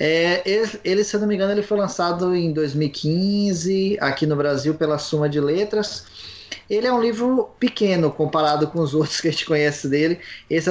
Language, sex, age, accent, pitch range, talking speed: Portuguese, male, 20-39, Brazilian, 155-195 Hz, 175 wpm